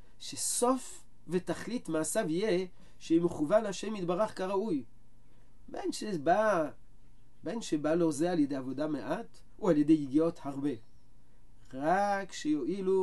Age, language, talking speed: 40-59, Hebrew, 120 wpm